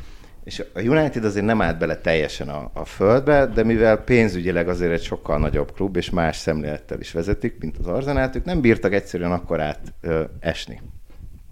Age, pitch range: 50-69, 80-100 Hz